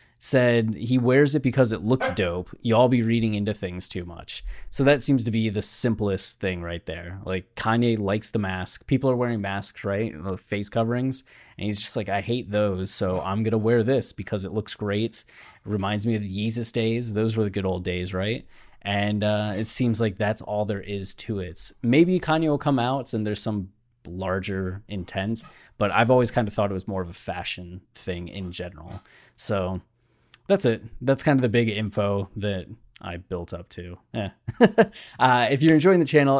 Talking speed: 205 wpm